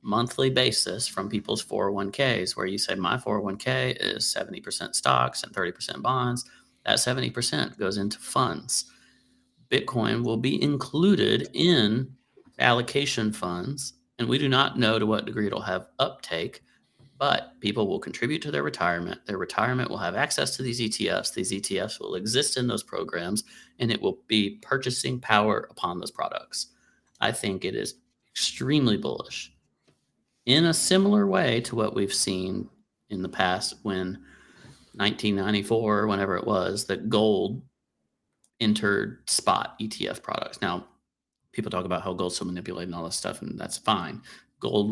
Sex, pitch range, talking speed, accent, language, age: male, 100-125 Hz, 150 wpm, American, English, 40-59